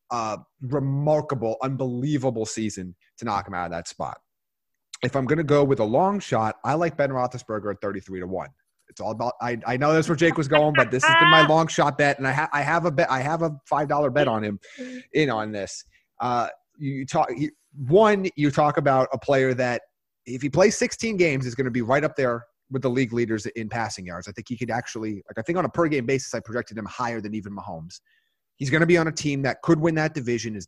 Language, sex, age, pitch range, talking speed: English, male, 30-49, 110-145 Hz, 250 wpm